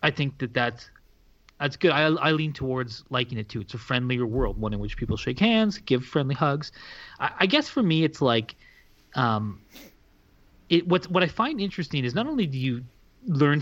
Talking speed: 205 wpm